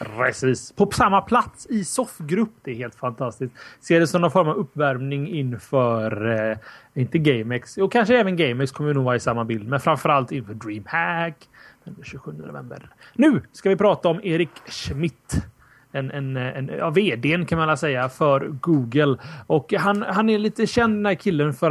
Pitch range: 130-175 Hz